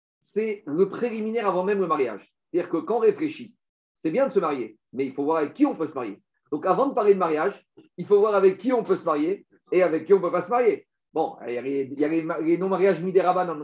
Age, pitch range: 50-69, 170-255 Hz